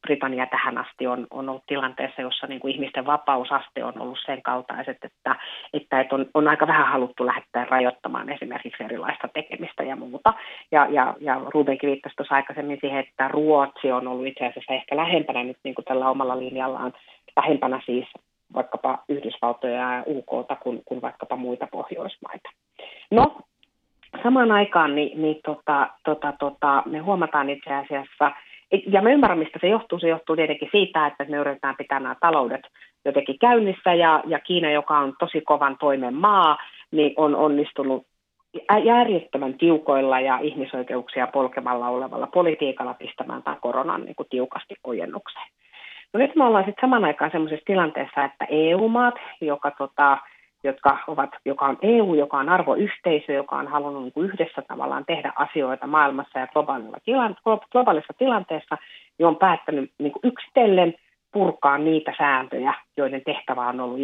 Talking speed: 150 wpm